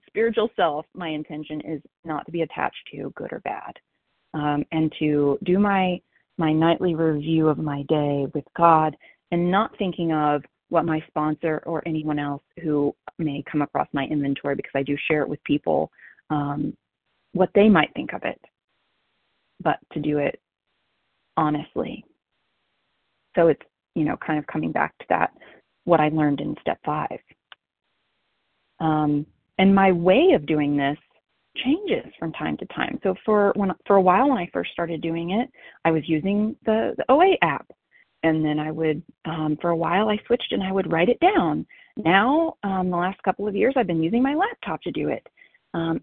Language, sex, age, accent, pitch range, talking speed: English, female, 30-49, American, 155-205 Hz, 185 wpm